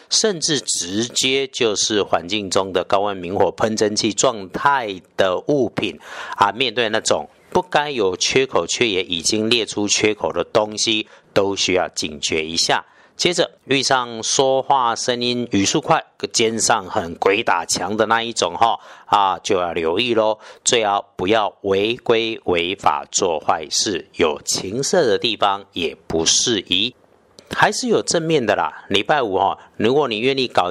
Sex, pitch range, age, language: male, 100-130 Hz, 50-69, Chinese